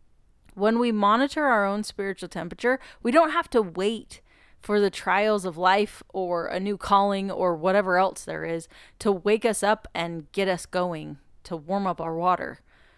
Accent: American